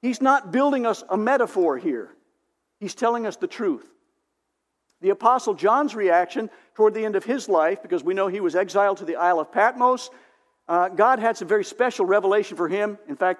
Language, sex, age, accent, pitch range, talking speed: English, male, 50-69, American, 195-305 Hz, 195 wpm